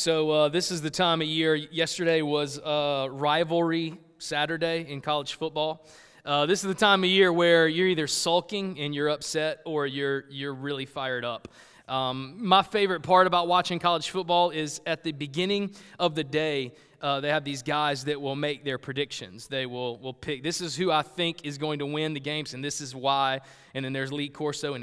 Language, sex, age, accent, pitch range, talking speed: English, male, 20-39, American, 145-170 Hz, 210 wpm